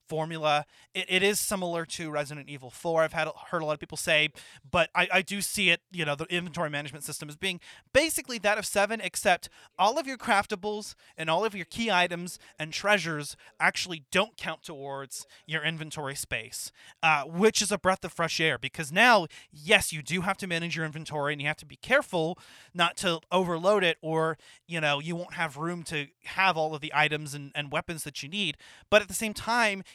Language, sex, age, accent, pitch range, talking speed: English, male, 30-49, American, 145-185 Hz, 215 wpm